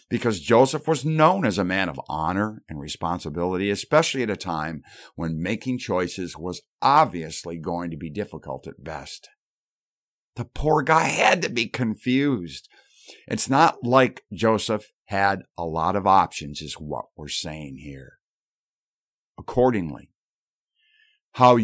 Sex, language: male, English